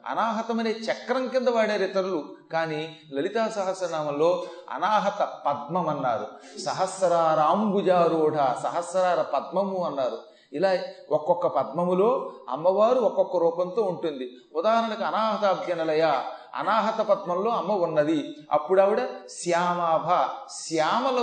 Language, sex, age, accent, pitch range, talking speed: Telugu, male, 30-49, native, 170-250 Hz, 85 wpm